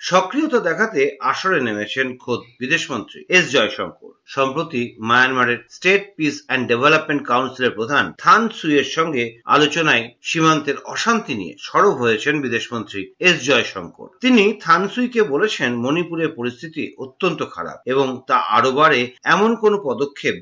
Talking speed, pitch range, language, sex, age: 120 wpm, 130-210 Hz, Bengali, male, 50-69